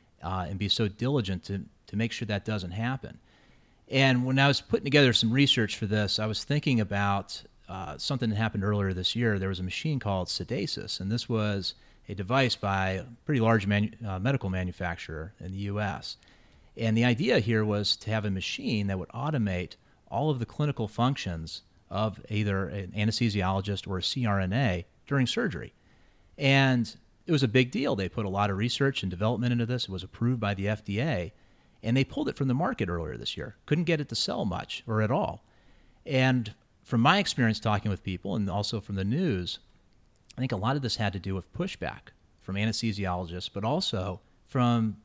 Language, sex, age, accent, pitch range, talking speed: English, male, 30-49, American, 95-125 Hz, 200 wpm